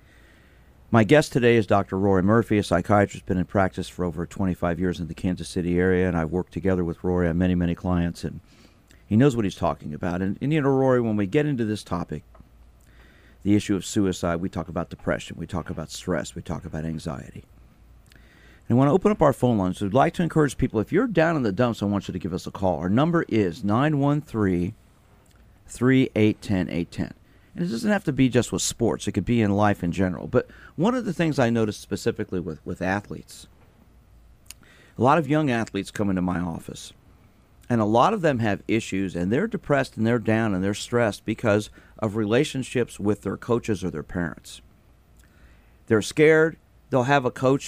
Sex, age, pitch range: male, 50-69, 90-120 Hz